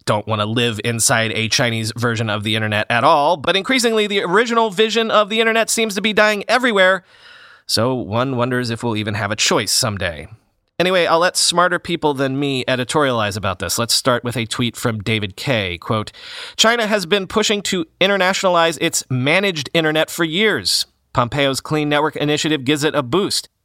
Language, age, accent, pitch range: English, 30-49, American, 115-190 Hz